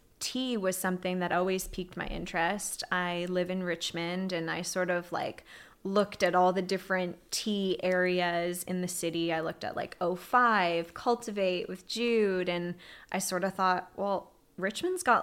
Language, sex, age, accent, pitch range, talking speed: English, female, 20-39, American, 180-205 Hz, 170 wpm